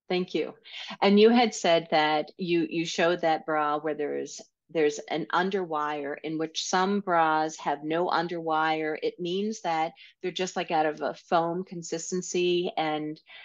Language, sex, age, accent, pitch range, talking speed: English, female, 40-59, American, 160-185 Hz, 160 wpm